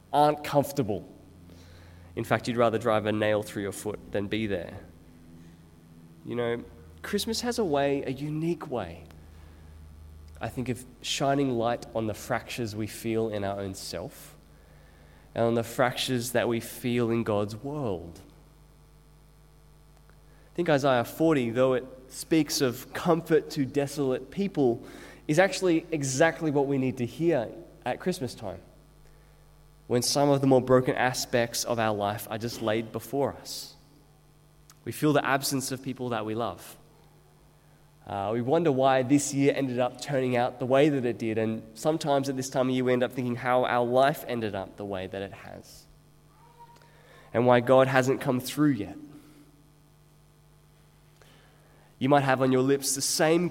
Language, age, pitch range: English, 20-39, 110-150 Hz